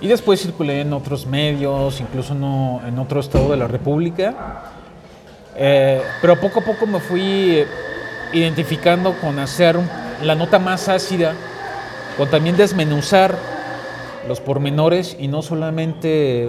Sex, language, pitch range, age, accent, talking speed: male, Spanish, 125-155 Hz, 40-59, Mexican, 125 wpm